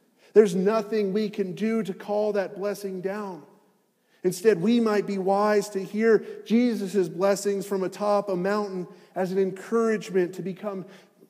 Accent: American